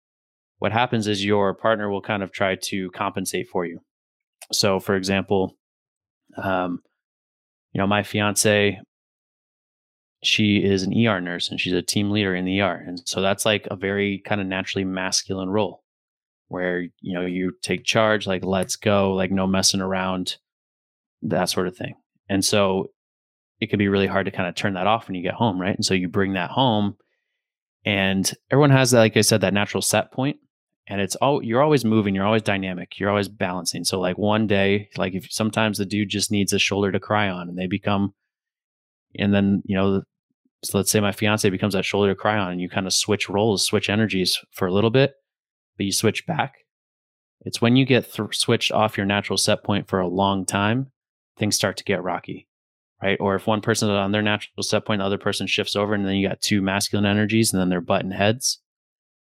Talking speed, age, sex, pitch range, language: 210 wpm, 20-39, male, 95-105 Hz, English